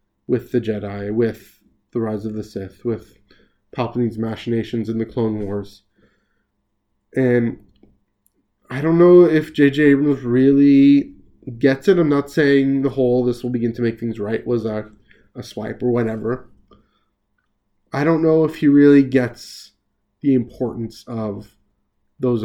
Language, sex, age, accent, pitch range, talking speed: English, male, 20-39, American, 105-125 Hz, 145 wpm